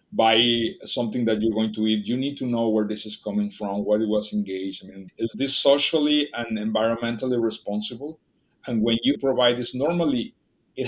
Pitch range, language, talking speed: 105-120 Hz, English, 195 wpm